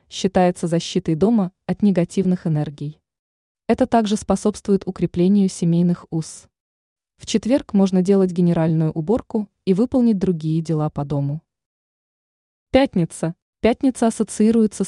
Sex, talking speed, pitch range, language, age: female, 110 wpm, 170-210 Hz, Russian, 20-39